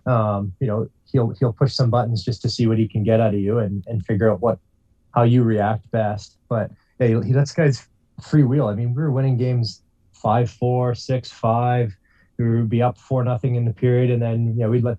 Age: 20-39